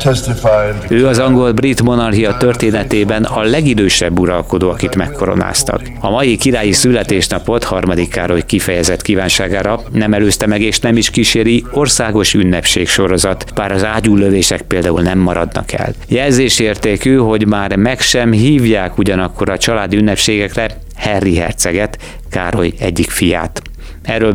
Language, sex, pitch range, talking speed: Hungarian, male, 100-150 Hz, 125 wpm